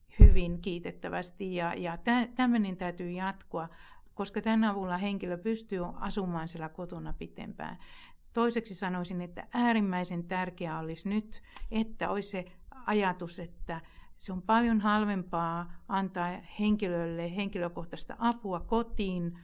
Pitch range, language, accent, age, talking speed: 175-215 Hz, Finnish, native, 60-79, 115 wpm